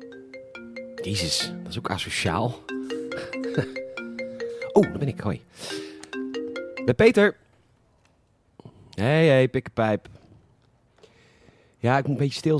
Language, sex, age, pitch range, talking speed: Dutch, male, 30-49, 105-130 Hz, 100 wpm